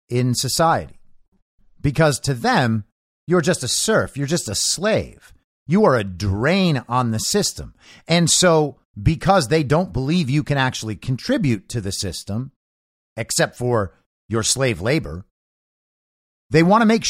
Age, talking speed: 50-69, 145 wpm